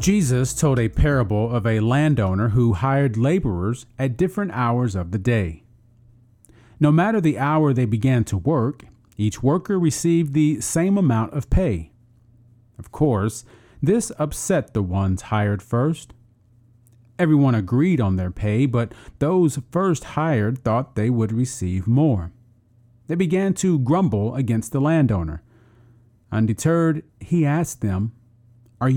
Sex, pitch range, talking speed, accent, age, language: male, 110-145 Hz, 135 wpm, American, 40-59, English